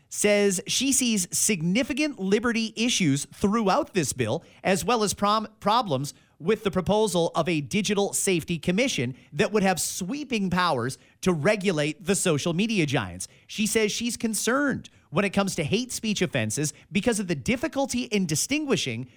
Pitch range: 140-210 Hz